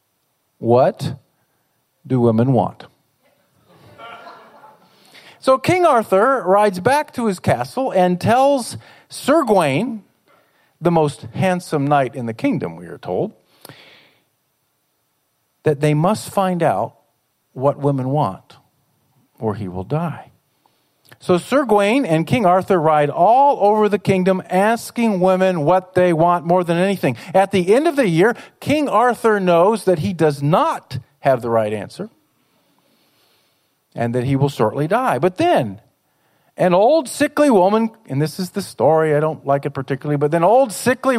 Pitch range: 145-215 Hz